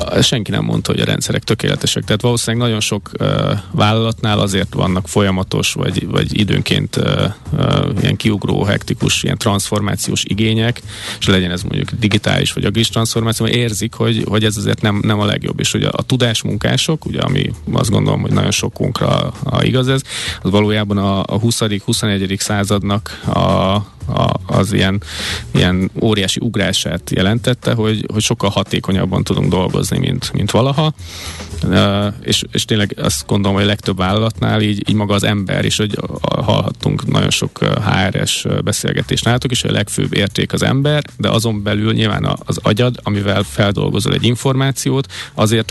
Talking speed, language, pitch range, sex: 160 wpm, Hungarian, 100-125 Hz, male